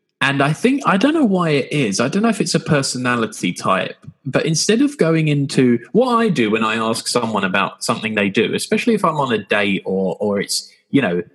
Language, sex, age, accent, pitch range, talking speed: English, male, 10-29, British, 115-165 Hz, 235 wpm